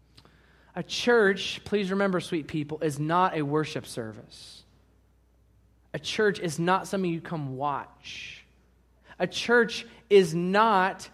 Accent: American